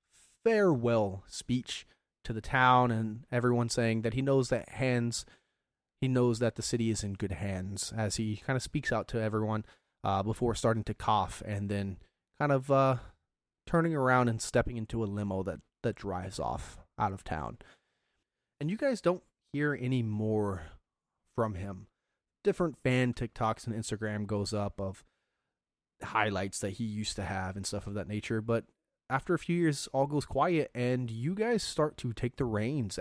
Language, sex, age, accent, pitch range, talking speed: English, male, 30-49, American, 105-125 Hz, 180 wpm